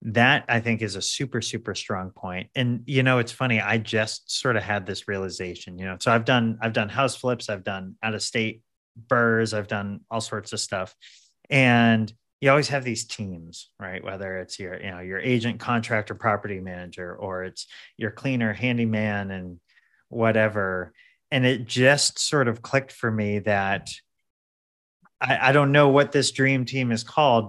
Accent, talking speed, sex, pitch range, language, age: American, 180 wpm, male, 100-120 Hz, English, 30-49